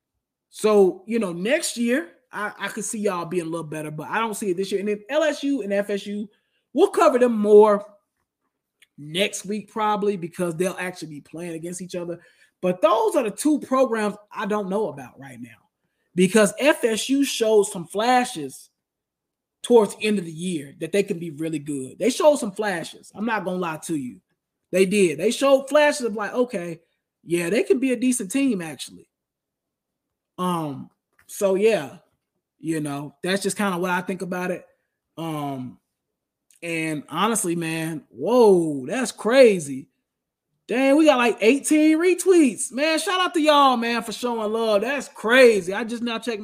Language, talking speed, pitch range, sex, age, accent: English, 180 wpm, 180-240 Hz, male, 20-39, American